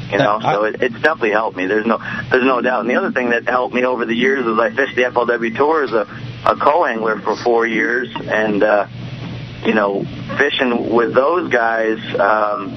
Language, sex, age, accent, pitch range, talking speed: English, male, 30-49, American, 105-125 Hz, 210 wpm